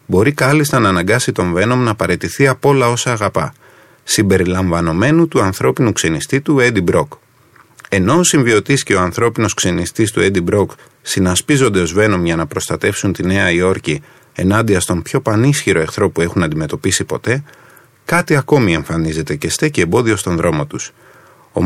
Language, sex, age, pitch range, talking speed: Greek, male, 30-49, 90-140 Hz, 160 wpm